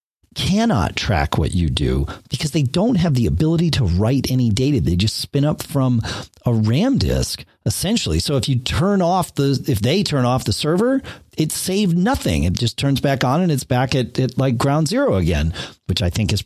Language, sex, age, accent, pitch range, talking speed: English, male, 40-59, American, 120-170 Hz, 210 wpm